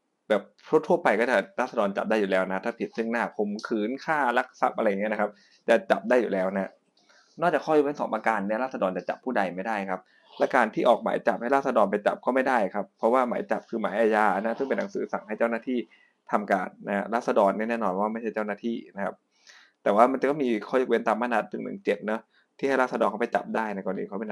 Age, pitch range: 20-39, 105-130 Hz